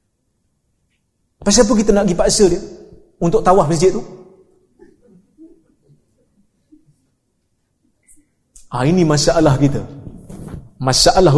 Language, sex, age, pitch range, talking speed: Malay, male, 30-49, 140-195 Hz, 85 wpm